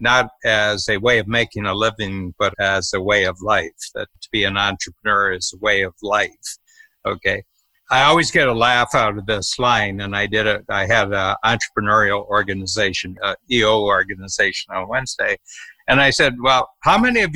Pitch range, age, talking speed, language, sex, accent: 105-145 Hz, 60-79, 190 wpm, English, male, American